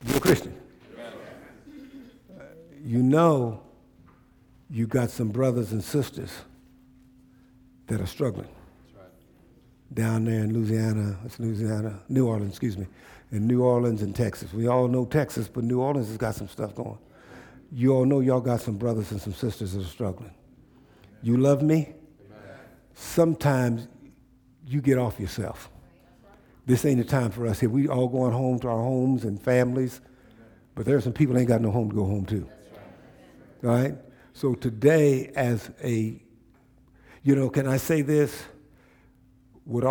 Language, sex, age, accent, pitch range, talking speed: English, male, 60-79, American, 115-140 Hz, 155 wpm